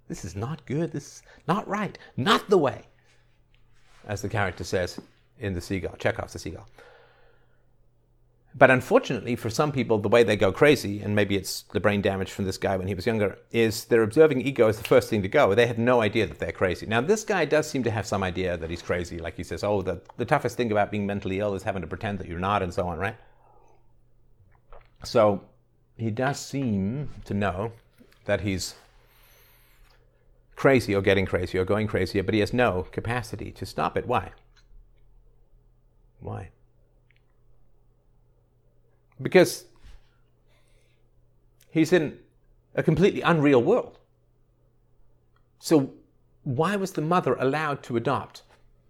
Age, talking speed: 50-69, 165 wpm